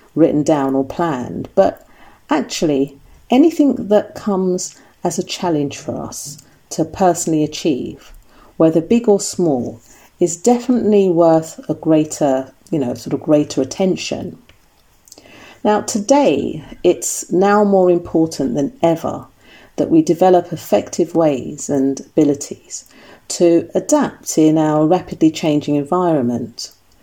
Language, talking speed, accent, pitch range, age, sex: English, 120 wpm, British, 145-190 Hz, 40-59, female